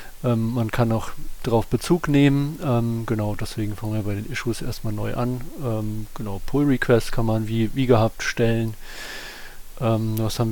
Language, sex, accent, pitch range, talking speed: German, male, German, 110-125 Hz, 170 wpm